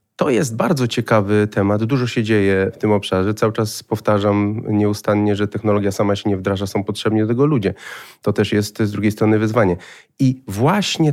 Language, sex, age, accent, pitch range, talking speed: Polish, male, 30-49, native, 100-120 Hz, 185 wpm